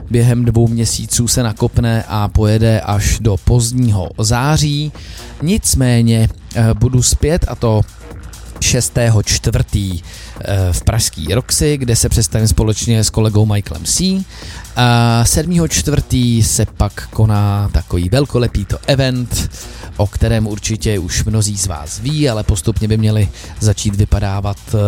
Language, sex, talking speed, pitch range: English, male, 125 wpm, 100-120 Hz